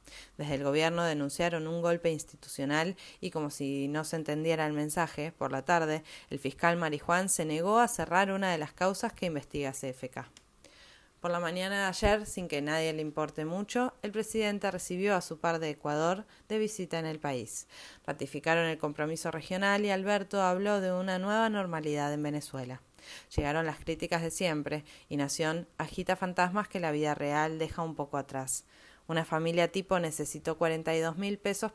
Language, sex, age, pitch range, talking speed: Spanish, female, 20-39, 150-190 Hz, 175 wpm